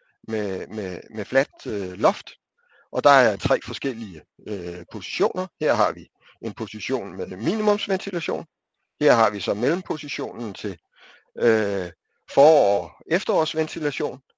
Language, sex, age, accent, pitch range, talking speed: Danish, male, 60-79, native, 110-160 Hz, 110 wpm